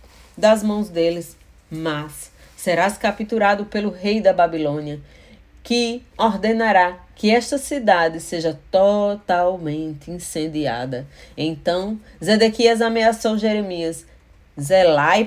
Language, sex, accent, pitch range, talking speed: Portuguese, female, Brazilian, 150-220 Hz, 90 wpm